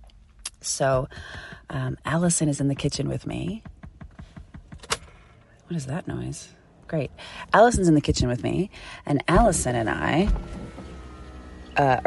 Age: 30-49